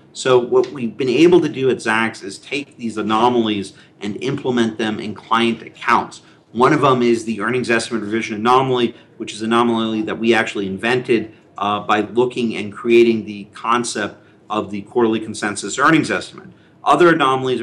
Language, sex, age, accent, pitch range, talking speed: English, male, 40-59, American, 110-125 Hz, 175 wpm